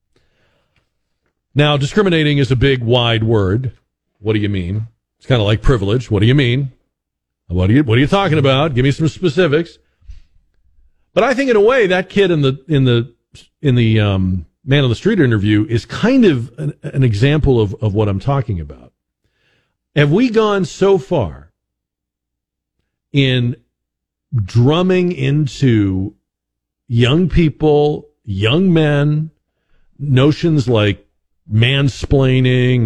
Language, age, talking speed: English, 50-69, 145 wpm